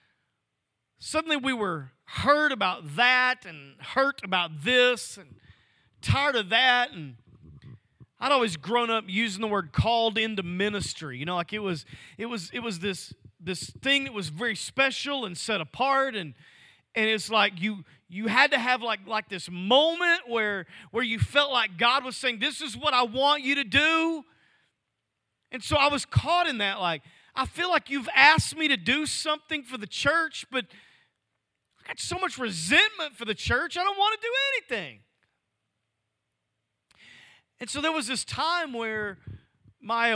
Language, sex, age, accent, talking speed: English, male, 40-59, American, 175 wpm